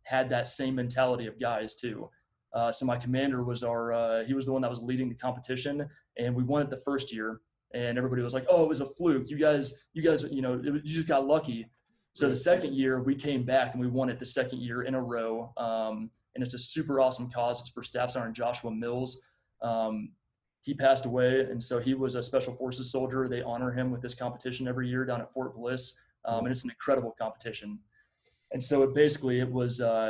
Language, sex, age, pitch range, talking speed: English, male, 20-39, 115-130 Hz, 230 wpm